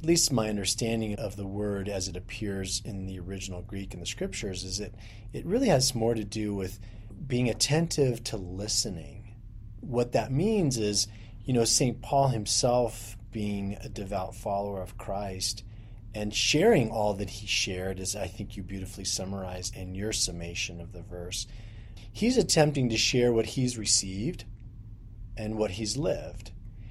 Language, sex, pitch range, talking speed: English, male, 105-125 Hz, 165 wpm